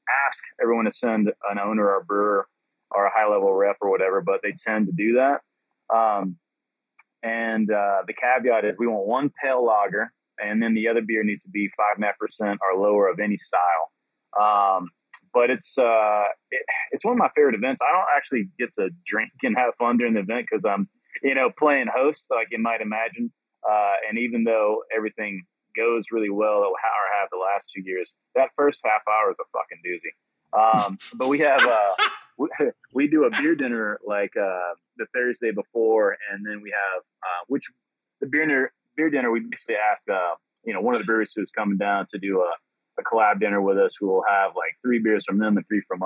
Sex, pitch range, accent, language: male, 100-135 Hz, American, English